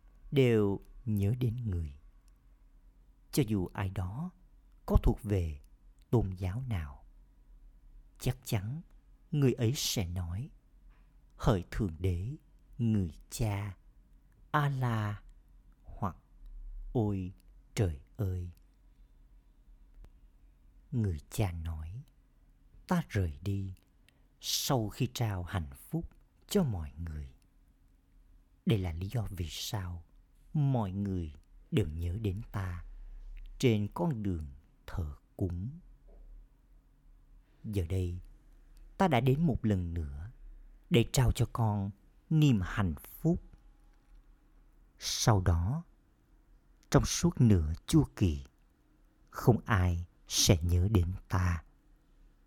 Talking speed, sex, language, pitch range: 105 wpm, male, Vietnamese, 85-120 Hz